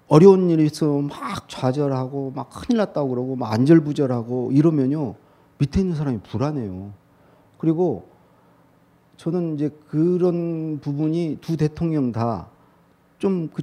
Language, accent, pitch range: Korean, native, 130-170 Hz